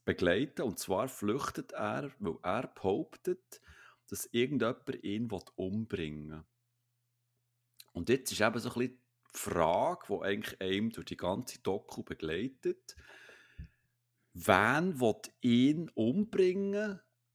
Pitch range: 105-125 Hz